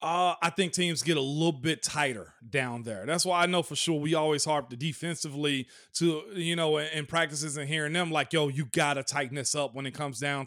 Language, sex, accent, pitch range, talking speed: English, male, American, 150-200 Hz, 235 wpm